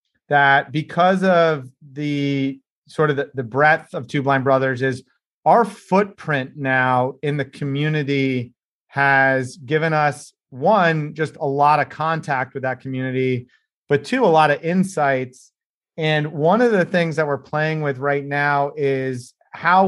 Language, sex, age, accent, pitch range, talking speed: English, male, 30-49, American, 140-165 Hz, 155 wpm